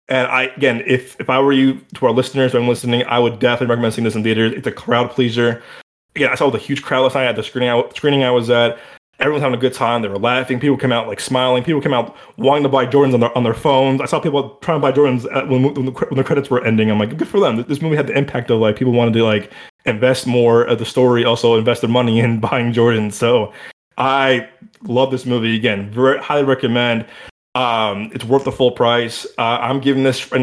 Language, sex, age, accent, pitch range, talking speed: English, male, 20-39, American, 115-135 Hz, 260 wpm